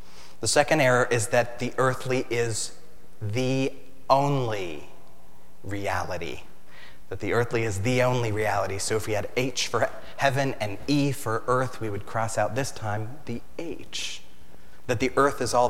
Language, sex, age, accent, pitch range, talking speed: English, male, 30-49, American, 95-125 Hz, 160 wpm